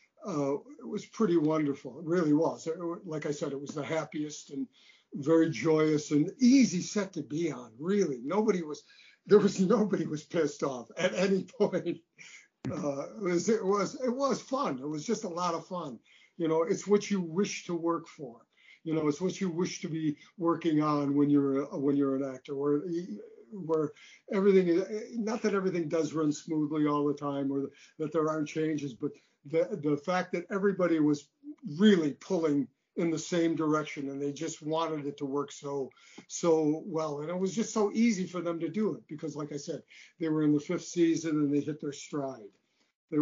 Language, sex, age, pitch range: English, male, 50-69, 150-190 Hz